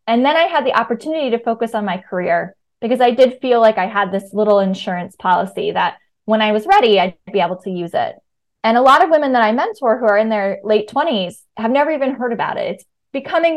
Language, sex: English, female